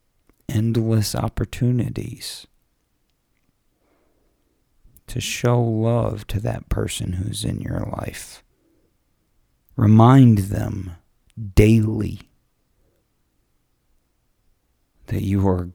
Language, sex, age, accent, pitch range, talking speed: English, male, 40-59, American, 95-110 Hz, 70 wpm